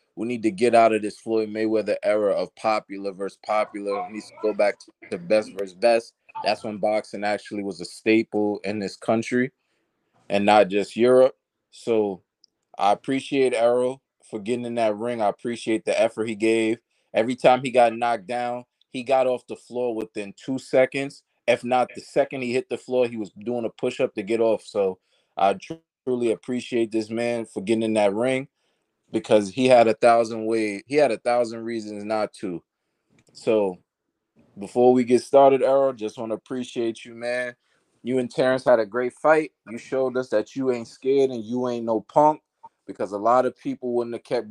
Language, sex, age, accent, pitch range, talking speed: English, male, 20-39, American, 110-130 Hz, 195 wpm